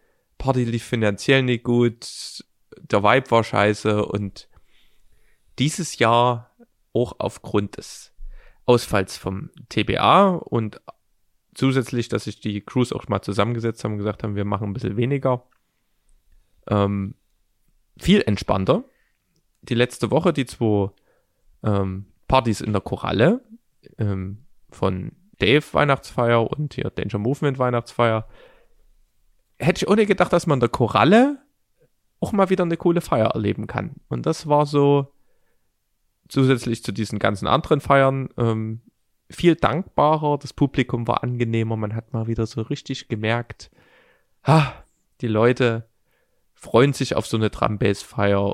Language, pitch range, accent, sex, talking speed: German, 105-140 Hz, German, male, 130 wpm